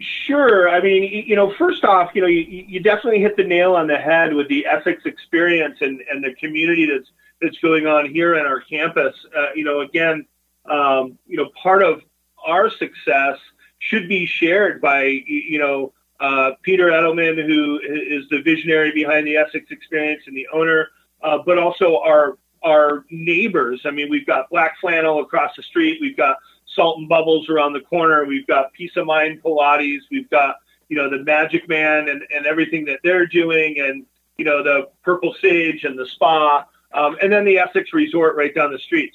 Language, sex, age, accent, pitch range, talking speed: English, male, 30-49, American, 145-185 Hz, 195 wpm